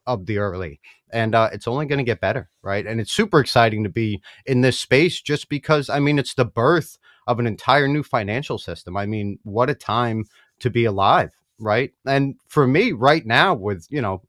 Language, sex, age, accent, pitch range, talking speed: English, male, 30-49, American, 105-125 Hz, 215 wpm